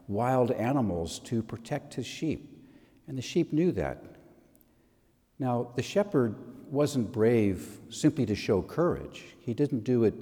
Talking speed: 140 wpm